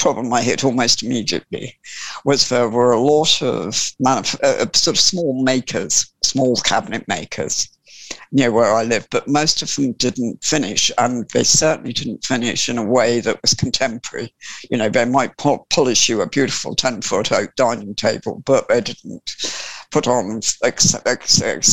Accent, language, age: British, English, 60-79